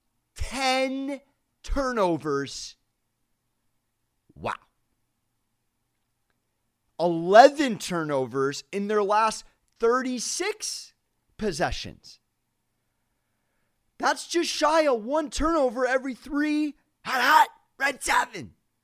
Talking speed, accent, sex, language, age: 70 wpm, American, male, English, 30-49